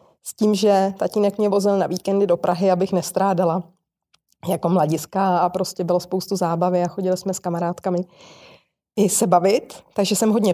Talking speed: 170 wpm